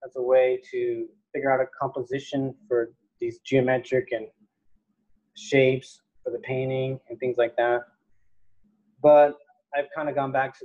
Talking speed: 150 wpm